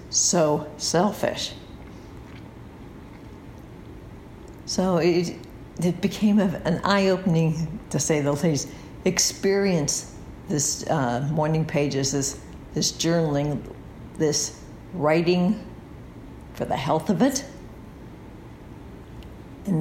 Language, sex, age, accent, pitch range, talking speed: English, female, 60-79, American, 140-180 Hz, 90 wpm